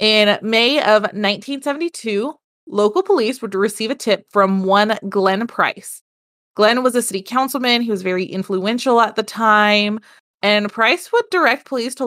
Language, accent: English, American